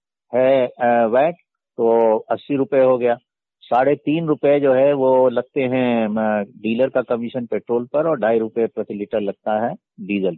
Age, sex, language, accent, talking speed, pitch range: 50-69, male, Hindi, native, 160 wpm, 115-145 Hz